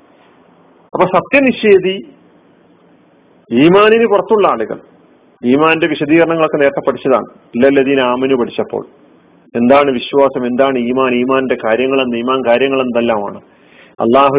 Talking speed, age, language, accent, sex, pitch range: 90 wpm, 40-59, Malayalam, native, male, 130-185 Hz